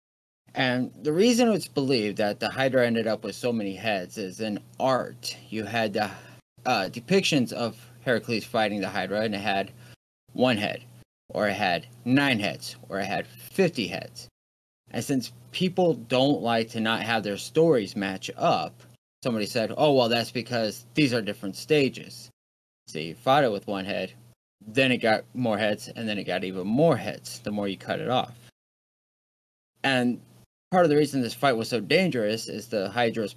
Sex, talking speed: male, 180 wpm